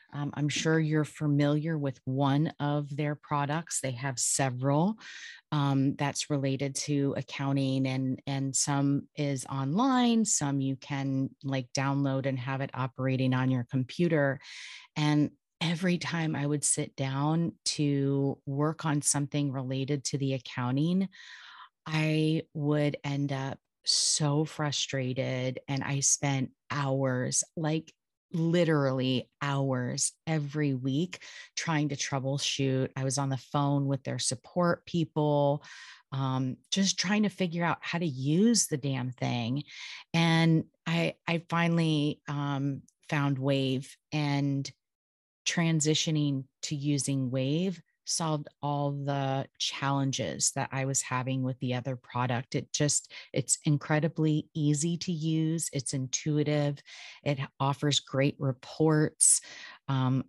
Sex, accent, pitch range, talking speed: female, American, 135-155 Hz, 125 wpm